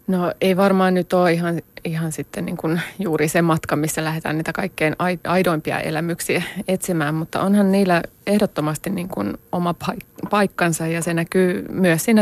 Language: Finnish